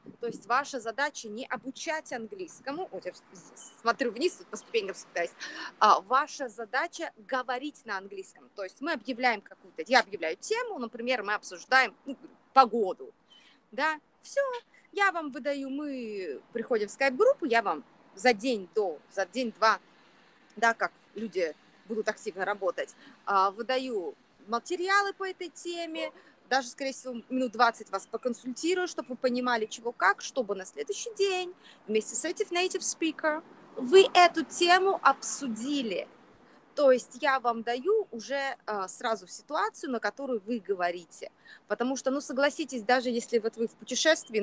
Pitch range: 230-295 Hz